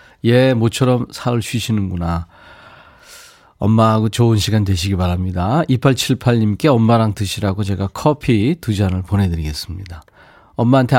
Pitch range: 95-135 Hz